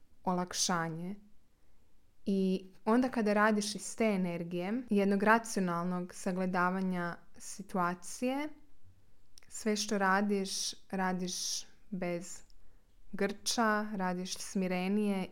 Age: 20-39